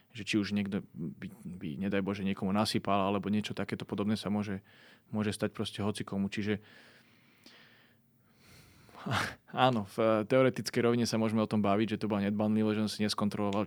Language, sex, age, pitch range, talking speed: Slovak, male, 20-39, 105-115 Hz, 160 wpm